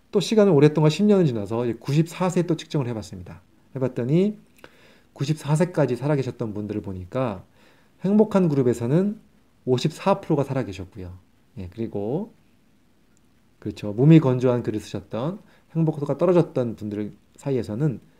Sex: male